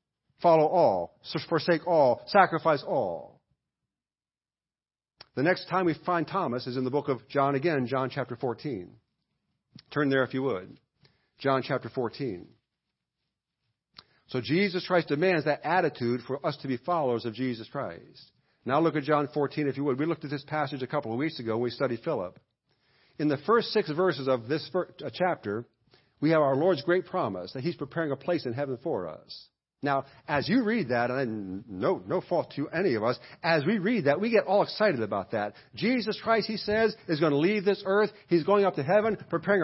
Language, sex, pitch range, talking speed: English, male, 140-195 Hz, 195 wpm